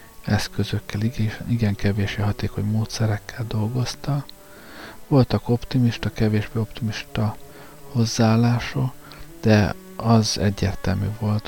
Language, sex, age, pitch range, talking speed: Hungarian, male, 50-69, 100-120 Hz, 80 wpm